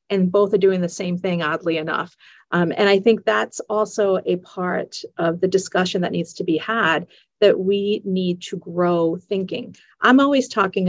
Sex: female